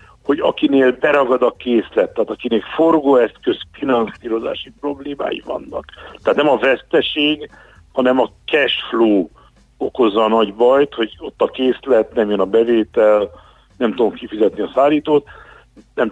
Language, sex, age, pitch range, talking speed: Hungarian, male, 60-79, 105-135 Hz, 140 wpm